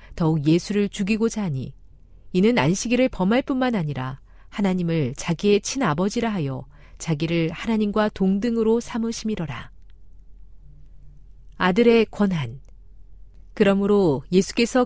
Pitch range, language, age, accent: 145-215 Hz, Korean, 40-59, native